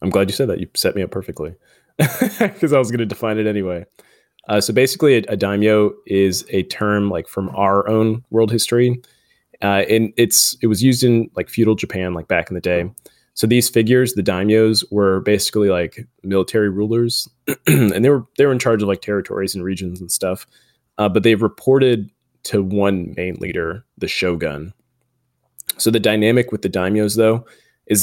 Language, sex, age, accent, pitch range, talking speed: English, male, 20-39, American, 95-115 Hz, 195 wpm